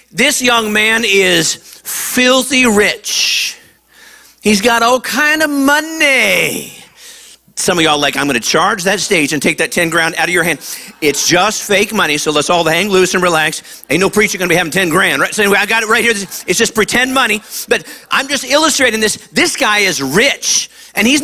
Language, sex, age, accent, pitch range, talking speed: English, male, 50-69, American, 205-255 Hz, 210 wpm